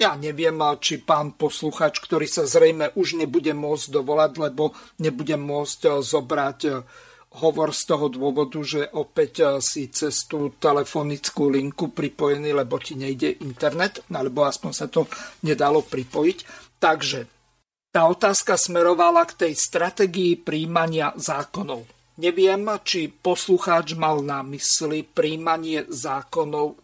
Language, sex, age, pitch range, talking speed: Slovak, male, 50-69, 145-175 Hz, 125 wpm